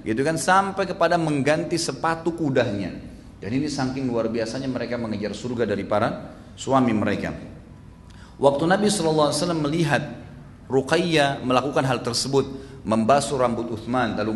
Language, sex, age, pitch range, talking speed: Indonesian, male, 40-59, 115-140 Hz, 130 wpm